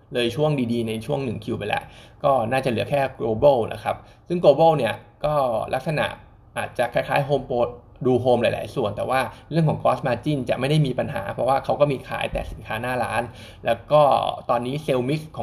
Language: Thai